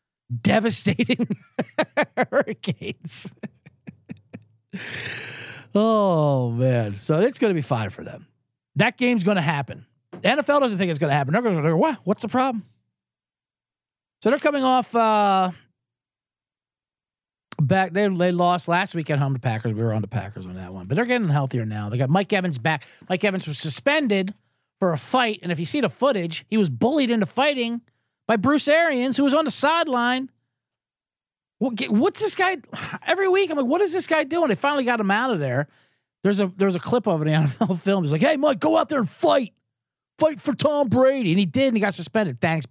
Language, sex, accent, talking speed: English, male, American, 205 wpm